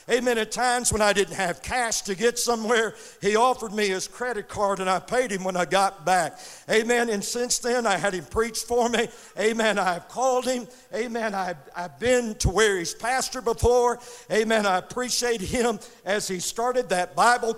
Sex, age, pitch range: male, 60-79, 190-235 Hz